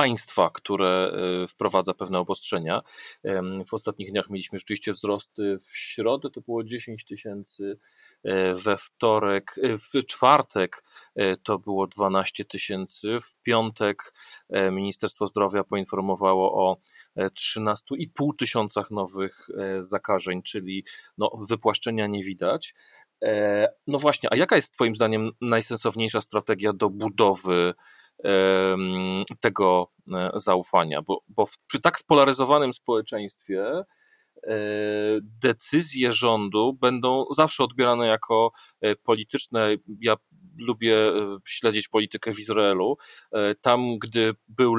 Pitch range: 100-115 Hz